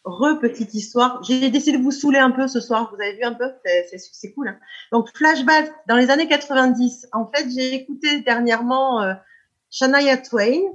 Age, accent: 30-49, French